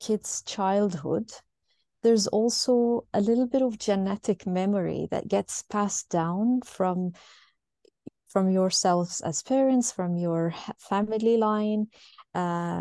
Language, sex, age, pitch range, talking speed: English, female, 30-49, 180-235 Hz, 110 wpm